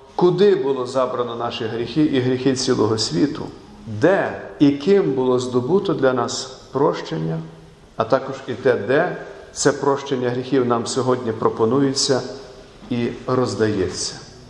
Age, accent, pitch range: 40-59, native, 125-165 Hz